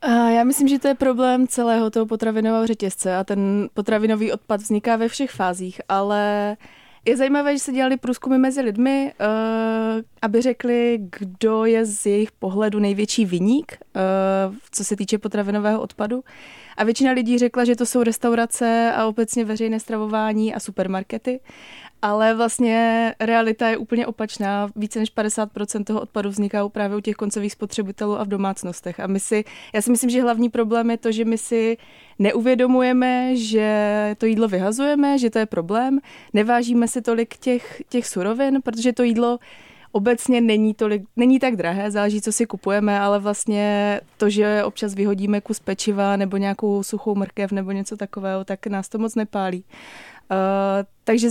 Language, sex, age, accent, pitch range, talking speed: Czech, female, 20-39, native, 205-235 Hz, 165 wpm